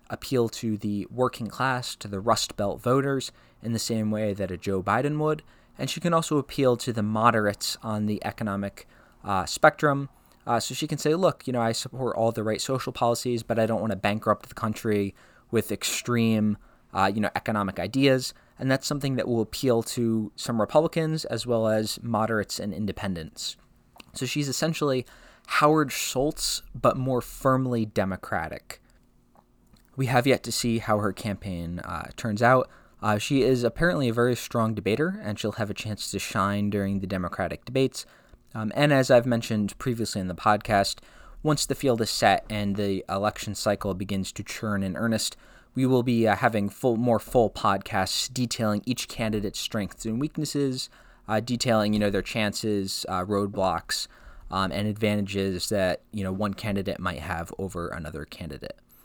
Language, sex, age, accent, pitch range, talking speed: English, male, 20-39, American, 100-125 Hz, 180 wpm